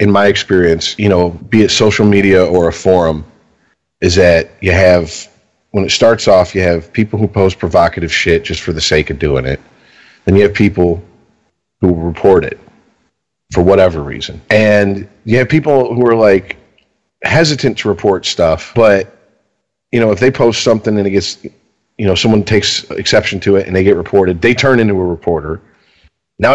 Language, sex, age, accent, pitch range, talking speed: English, male, 40-59, American, 95-120 Hz, 185 wpm